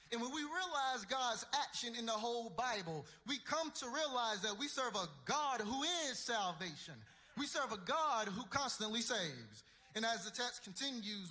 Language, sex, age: English, male, 30-49